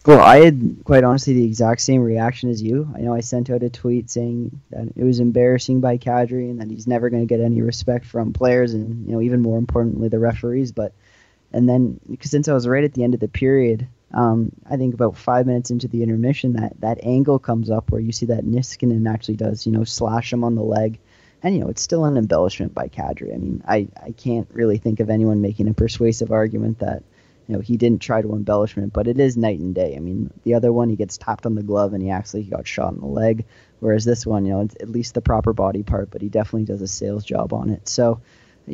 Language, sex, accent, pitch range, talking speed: English, male, American, 110-125 Hz, 255 wpm